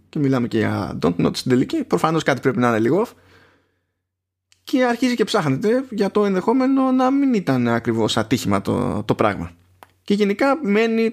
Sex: male